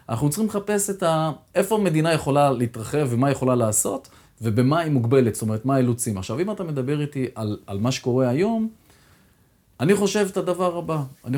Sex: male